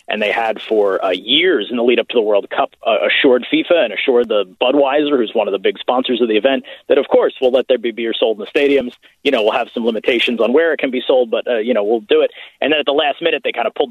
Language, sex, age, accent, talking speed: English, male, 30-49, American, 305 wpm